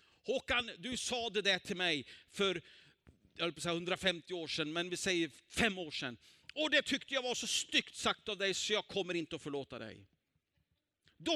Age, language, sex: 50-69, Swedish, male